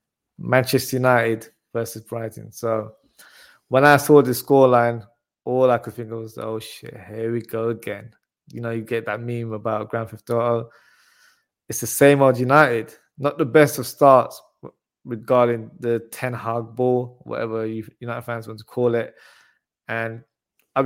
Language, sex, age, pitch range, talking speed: English, male, 20-39, 115-140 Hz, 165 wpm